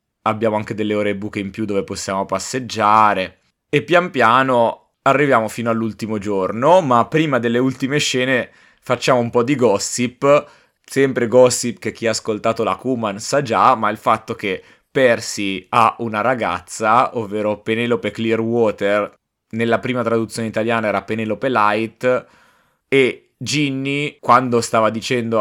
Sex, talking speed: male, 140 wpm